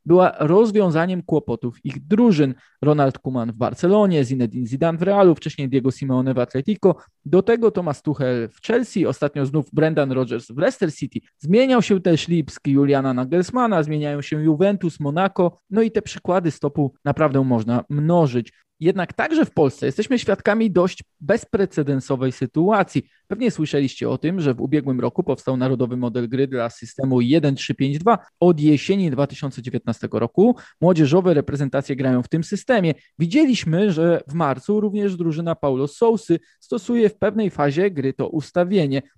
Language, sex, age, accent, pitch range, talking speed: Polish, male, 20-39, native, 135-195 Hz, 150 wpm